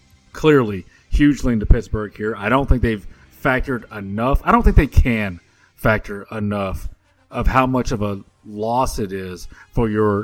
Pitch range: 100-135 Hz